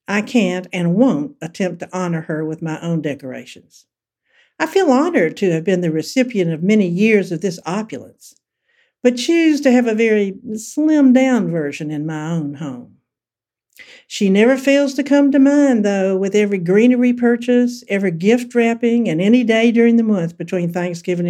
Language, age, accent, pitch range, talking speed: English, 60-79, American, 175-245 Hz, 170 wpm